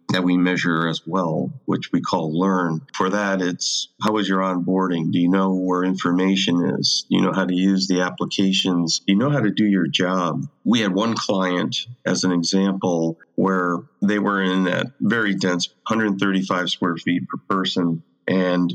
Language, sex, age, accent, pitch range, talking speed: English, male, 40-59, American, 85-95 Hz, 185 wpm